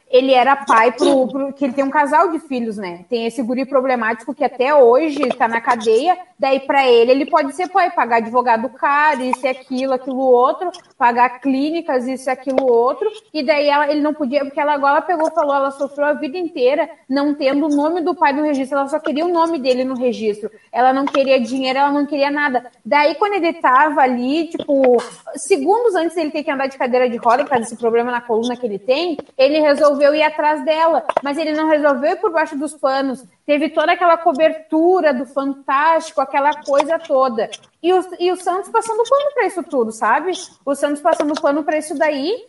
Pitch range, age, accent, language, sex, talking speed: 255-315 Hz, 20-39, Brazilian, Portuguese, female, 215 wpm